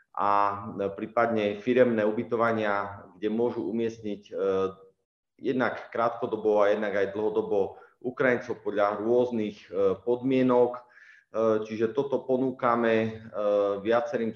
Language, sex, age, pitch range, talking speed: Slovak, male, 30-49, 100-120 Hz, 90 wpm